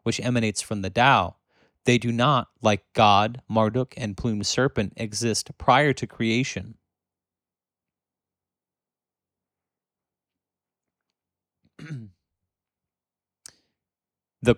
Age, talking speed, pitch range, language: 30-49, 75 wpm, 100-120 Hz, English